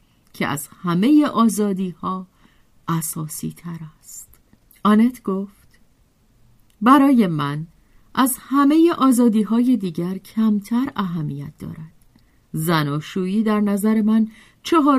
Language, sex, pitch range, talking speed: Persian, female, 165-235 Hz, 100 wpm